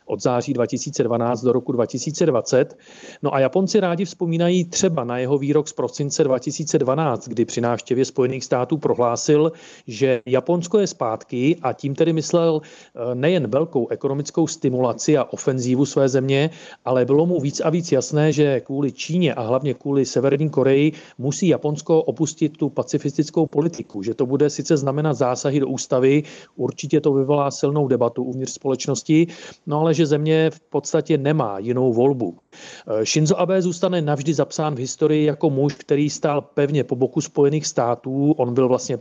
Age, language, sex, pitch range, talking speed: 40-59, Czech, male, 130-160 Hz, 160 wpm